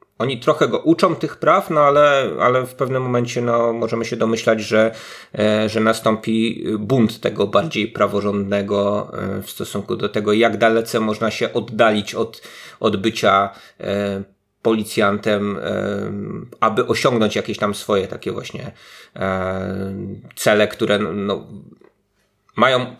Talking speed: 135 wpm